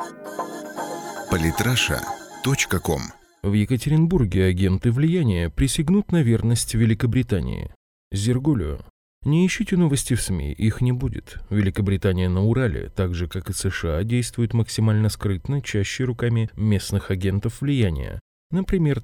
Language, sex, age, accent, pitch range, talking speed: Russian, male, 20-39, native, 95-125 Hz, 105 wpm